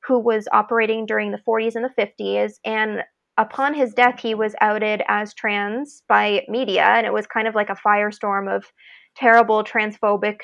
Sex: female